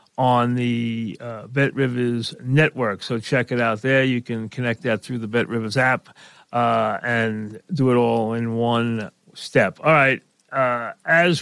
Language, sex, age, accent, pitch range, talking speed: English, male, 40-59, American, 120-145 Hz, 160 wpm